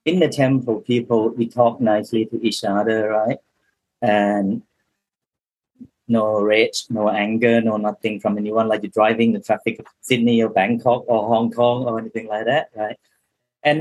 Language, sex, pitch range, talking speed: English, male, 110-125 Hz, 165 wpm